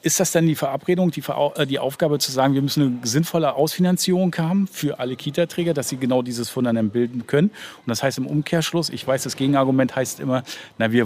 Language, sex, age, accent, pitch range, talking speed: German, male, 40-59, German, 120-150 Hz, 210 wpm